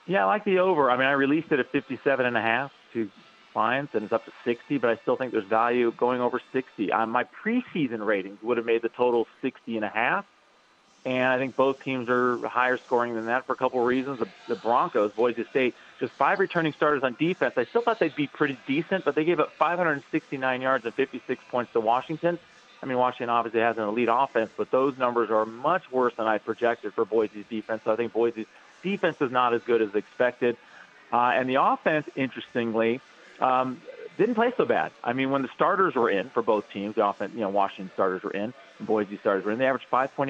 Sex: male